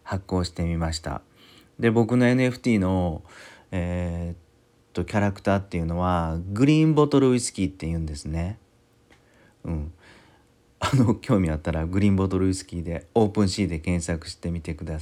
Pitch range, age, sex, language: 85-110 Hz, 40-59, male, Japanese